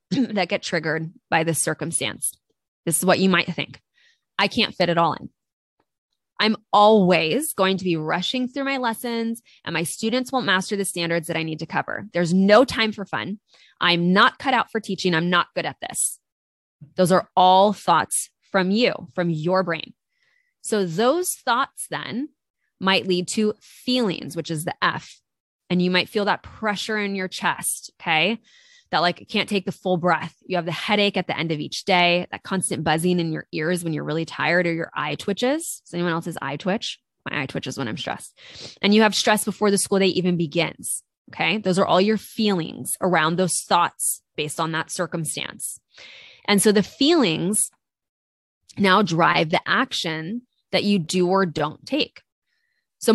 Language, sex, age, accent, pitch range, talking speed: English, female, 20-39, American, 165-215 Hz, 185 wpm